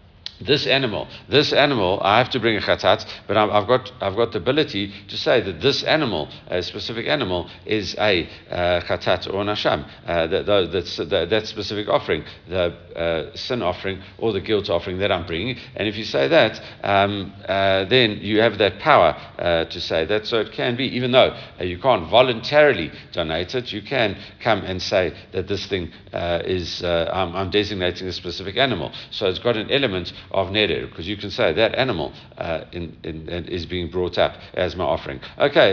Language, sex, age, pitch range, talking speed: English, male, 60-79, 90-115 Hz, 200 wpm